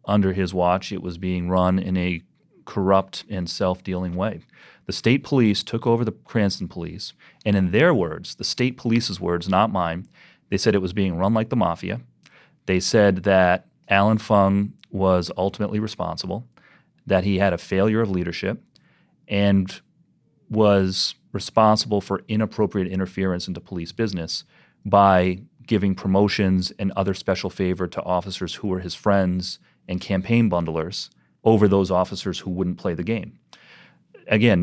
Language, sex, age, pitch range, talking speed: English, male, 30-49, 90-105 Hz, 155 wpm